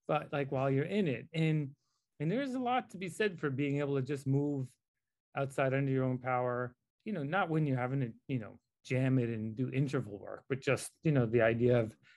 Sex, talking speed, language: male, 230 wpm, English